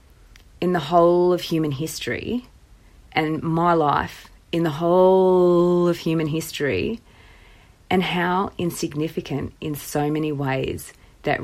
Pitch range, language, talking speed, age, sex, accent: 145-170 Hz, English, 120 wpm, 30-49, female, Australian